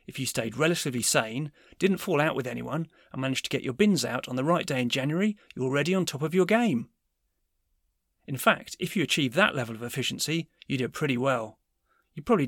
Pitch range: 130-180 Hz